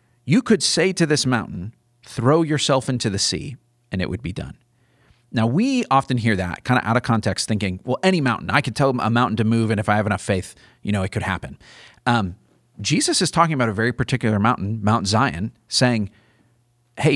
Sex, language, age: male, English, 30-49